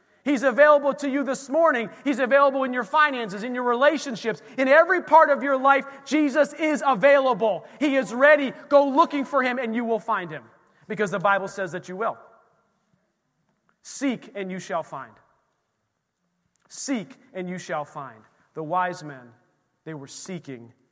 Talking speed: 165 wpm